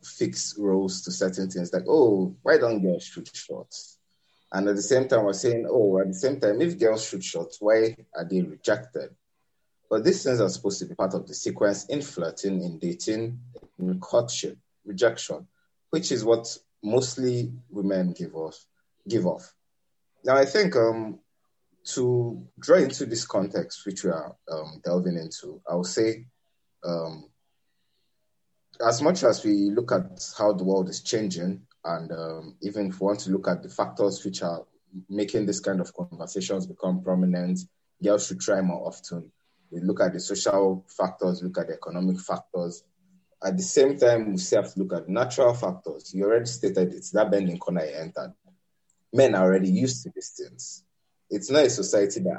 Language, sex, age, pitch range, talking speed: English, male, 30-49, 90-120 Hz, 180 wpm